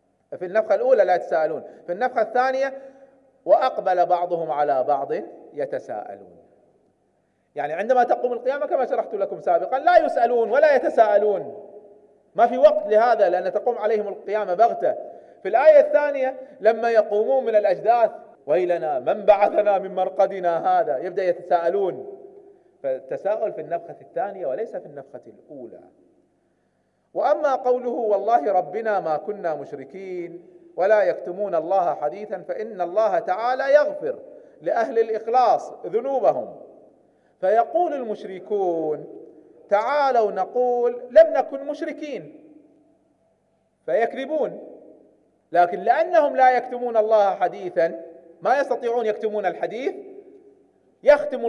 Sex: male